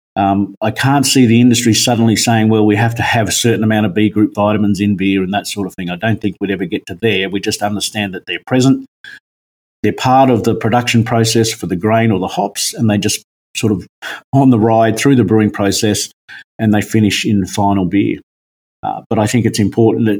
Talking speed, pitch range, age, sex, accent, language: 230 wpm, 105-125 Hz, 50-69, male, Australian, English